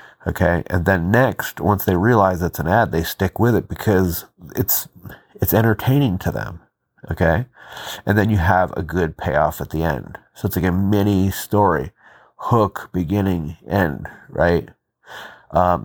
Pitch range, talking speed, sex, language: 90-110 Hz, 160 wpm, male, English